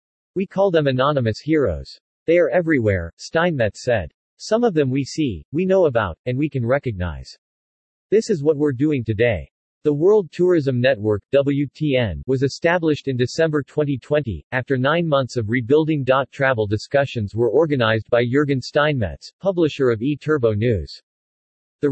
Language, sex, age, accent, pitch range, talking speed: English, male, 50-69, American, 120-150 Hz, 150 wpm